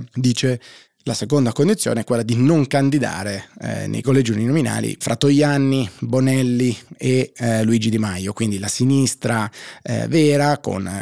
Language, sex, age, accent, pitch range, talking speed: Italian, male, 20-39, native, 110-135 Hz, 140 wpm